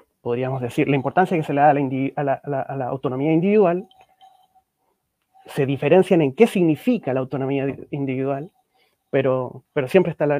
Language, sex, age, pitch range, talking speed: Spanish, male, 30-49, 140-185 Hz, 150 wpm